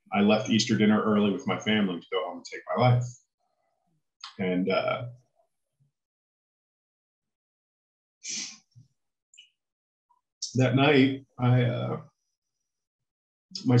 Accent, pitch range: American, 110-130 Hz